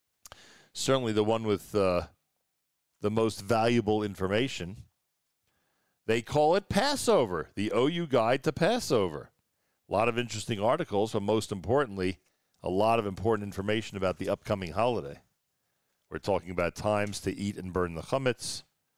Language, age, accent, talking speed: English, 40-59, American, 140 wpm